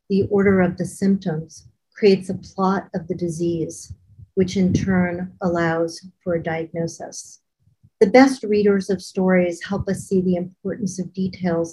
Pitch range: 170-195 Hz